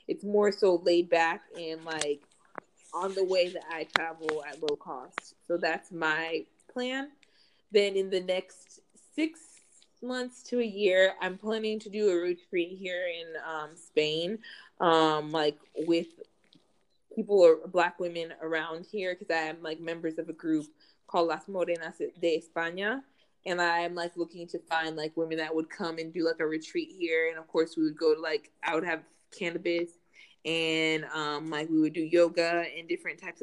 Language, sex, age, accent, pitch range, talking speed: English, female, 20-39, American, 160-210 Hz, 180 wpm